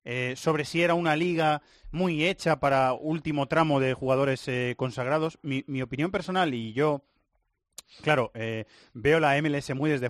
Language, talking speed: Spanish, 165 wpm